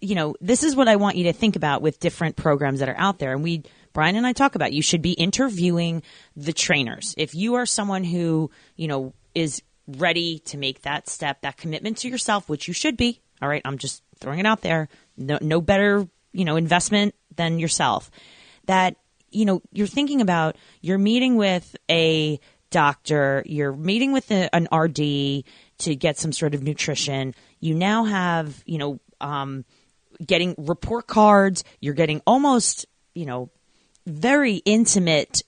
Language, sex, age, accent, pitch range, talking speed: English, female, 30-49, American, 155-205 Hz, 180 wpm